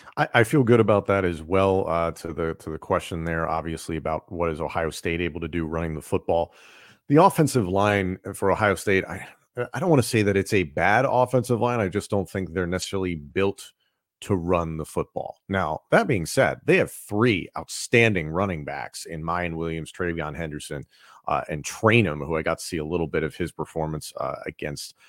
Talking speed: 210 wpm